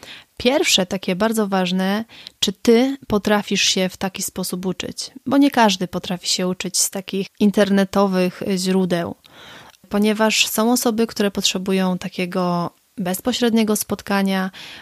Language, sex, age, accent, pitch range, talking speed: Polish, female, 30-49, native, 185-215 Hz, 120 wpm